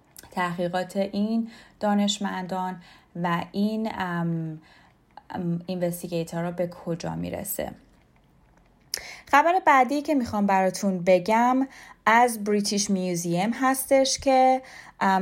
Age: 30-49